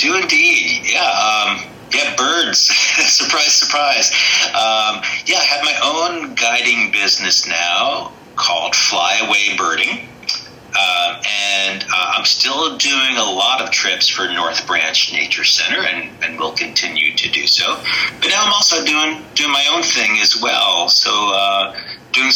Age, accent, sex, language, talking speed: 40-59, American, male, English, 155 wpm